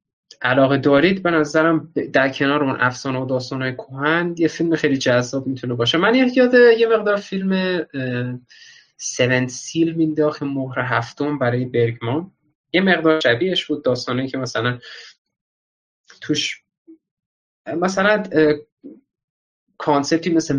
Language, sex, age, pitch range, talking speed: Persian, male, 20-39, 125-160 Hz, 115 wpm